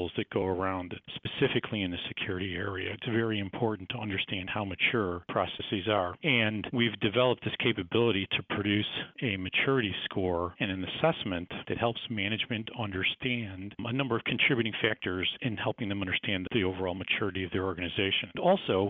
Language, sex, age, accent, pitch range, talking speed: English, male, 40-59, American, 95-115 Hz, 160 wpm